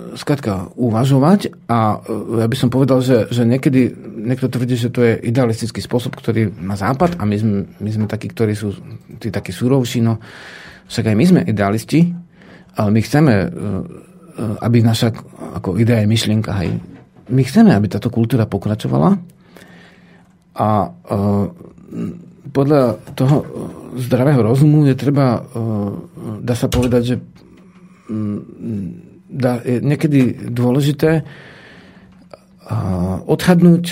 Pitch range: 110-150 Hz